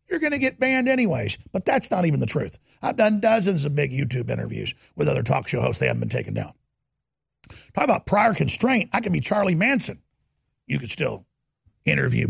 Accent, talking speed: American, 205 wpm